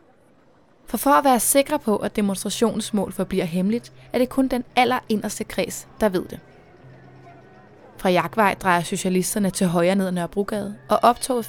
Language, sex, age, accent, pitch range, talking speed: Danish, female, 20-39, native, 185-220 Hz, 160 wpm